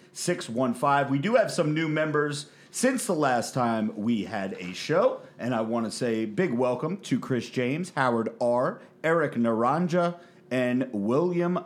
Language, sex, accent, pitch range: English, male, American, 120-175 Hz